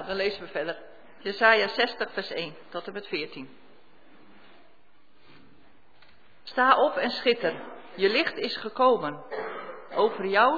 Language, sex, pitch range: Dutch, female, 180-245 Hz